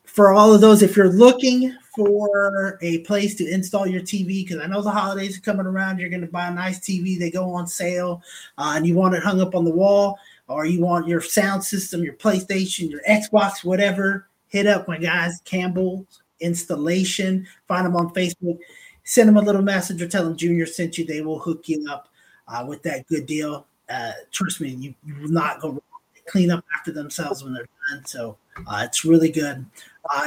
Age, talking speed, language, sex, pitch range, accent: 30-49, 215 wpm, English, male, 160-200 Hz, American